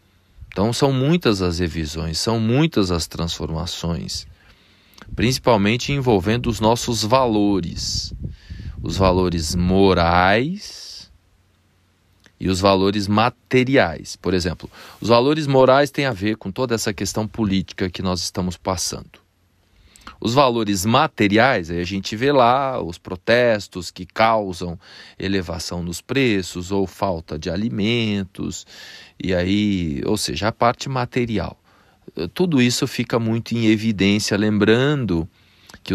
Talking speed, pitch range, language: 120 wpm, 90-110 Hz, Portuguese